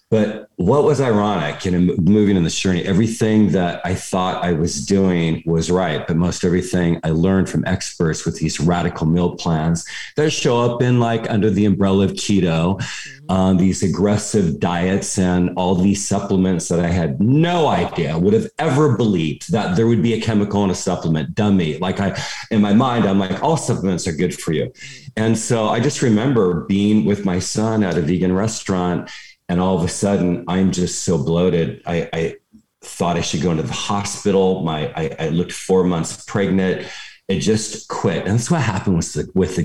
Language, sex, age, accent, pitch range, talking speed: English, male, 50-69, American, 85-105 Hz, 195 wpm